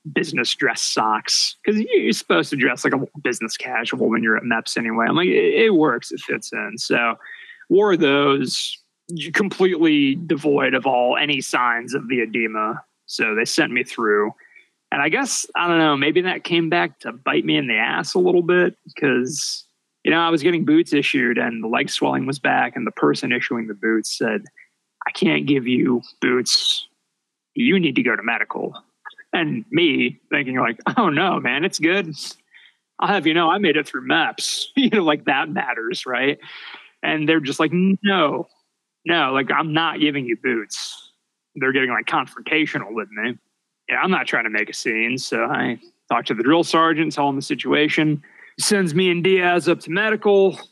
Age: 20-39